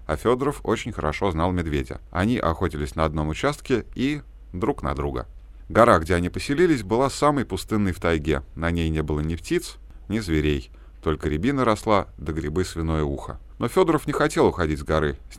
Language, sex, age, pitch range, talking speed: Russian, male, 30-49, 75-105 Hz, 185 wpm